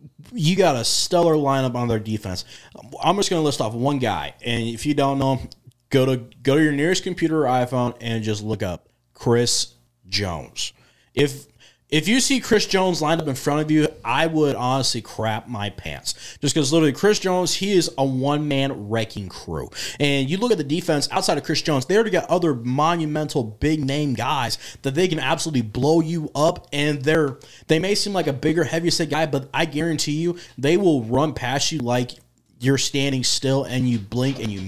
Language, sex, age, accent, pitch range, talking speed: English, male, 20-39, American, 120-155 Hz, 200 wpm